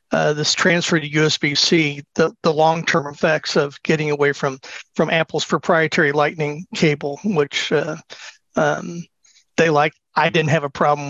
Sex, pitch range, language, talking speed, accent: male, 145-170 Hz, English, 150 wpm, American